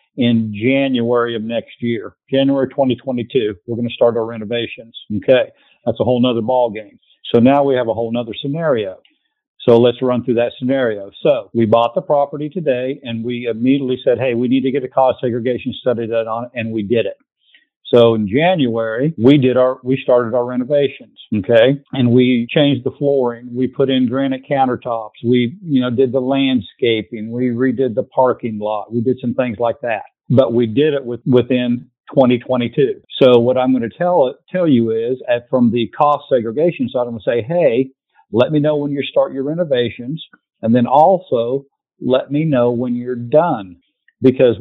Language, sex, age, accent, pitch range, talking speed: English, male, 50-69, American, 120-135 Hz, 190 wpm